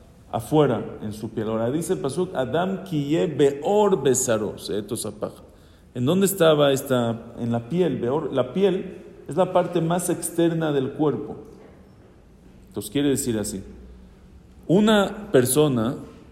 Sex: male